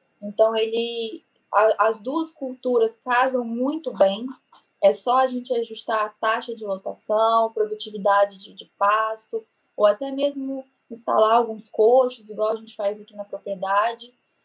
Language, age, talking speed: Portuguese, 20-39, 140 wpm